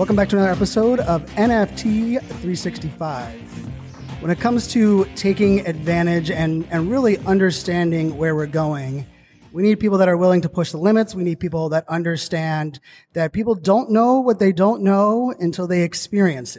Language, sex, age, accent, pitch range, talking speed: English, male, 30-49, American, 165-190 Hz, 170 wpm